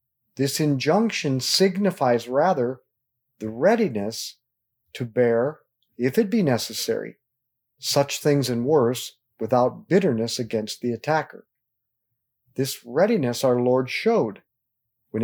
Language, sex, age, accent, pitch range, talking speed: English, male, 50-69, American, 120-145 Hz, 105 wpm